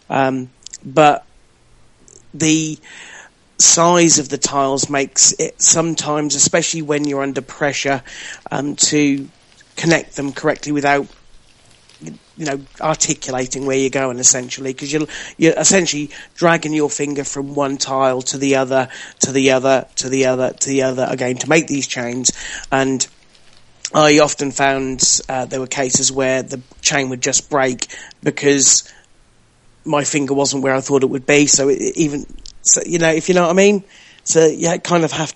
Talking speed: 165 wpm